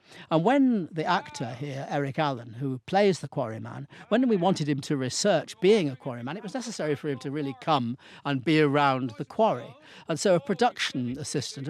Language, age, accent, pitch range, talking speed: English, 50-69, British, 135-180 Hz, 205 wpm